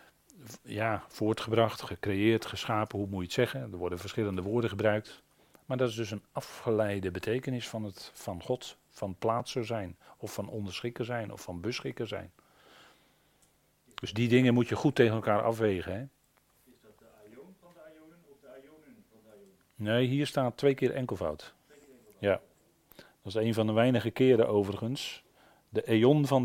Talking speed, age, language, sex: 175 wpm, 40-59, Dutch, male